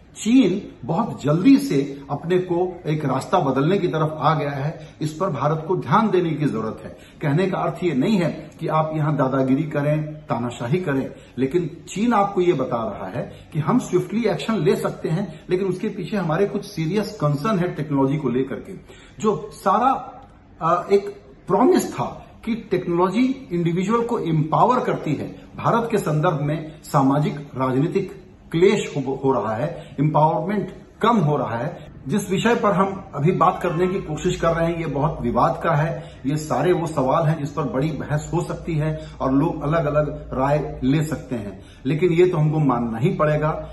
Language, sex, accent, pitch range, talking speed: Hindi, male, native, 135-180 Hz, 185 wpm